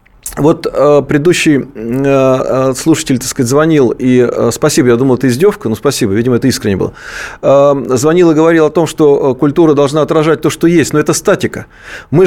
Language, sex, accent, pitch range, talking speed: Russian, male, native, 140-180 Hz, 165 wpm